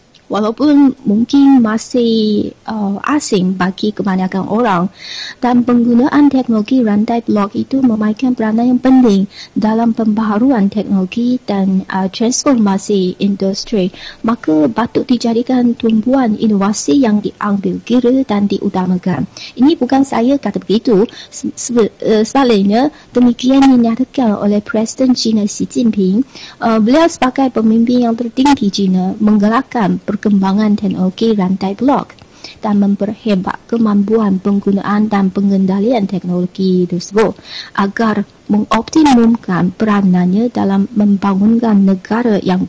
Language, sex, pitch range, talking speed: Malay, female, 200-245 Hz, 105 wpm